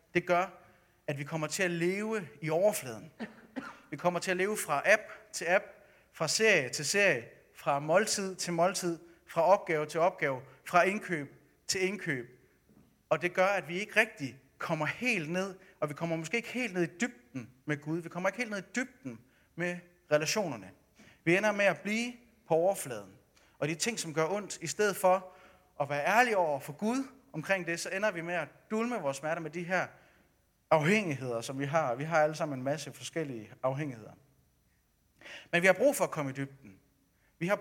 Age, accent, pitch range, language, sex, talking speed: 30-49, native, 150-195 Hz, Danish, male, 195 wpm